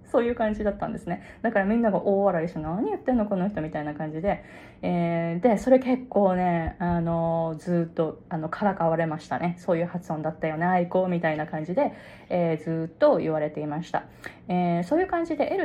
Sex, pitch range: female, 170-235 Hz